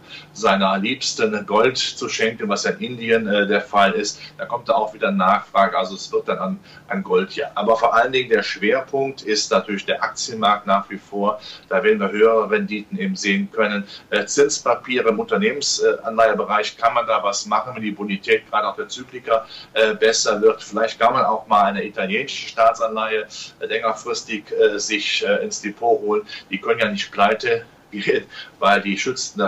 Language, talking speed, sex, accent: German, 190 wpm, male, German